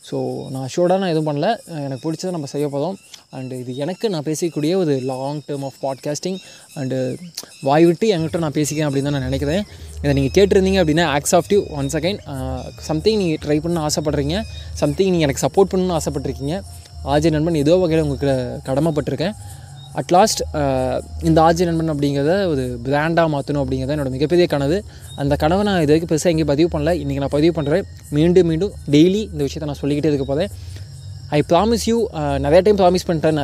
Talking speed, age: 180 wpm, 20-39